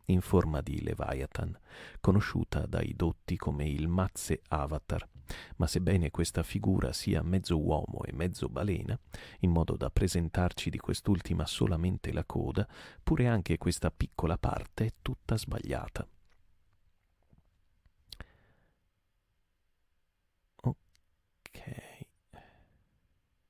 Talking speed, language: 100 wpm, Italian